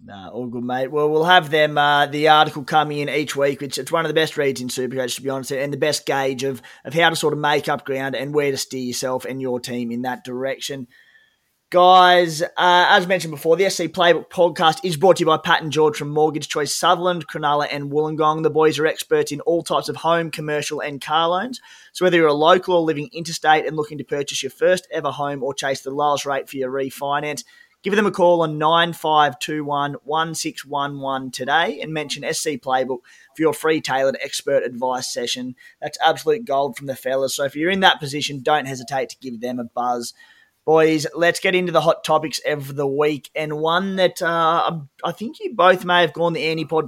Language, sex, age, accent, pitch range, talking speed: English, male, 20-39, Australian, 140-165 Hz, 220 wpm